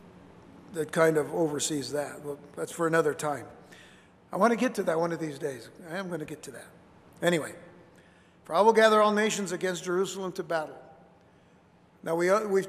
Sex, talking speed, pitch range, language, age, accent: male, 195 wpm, 170-210 Hz, English, 60-79, American